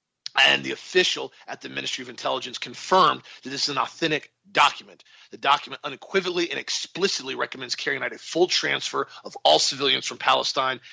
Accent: American